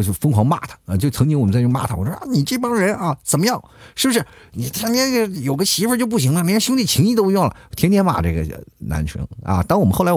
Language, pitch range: Chinese, 95-155 Hz